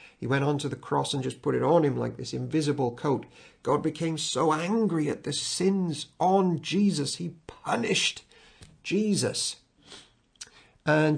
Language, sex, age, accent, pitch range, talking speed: English, male, 50-69, British, 115-150 Hz, 155 wpm